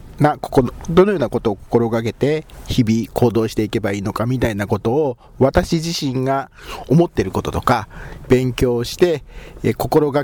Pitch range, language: 110-145 Hz, Japanese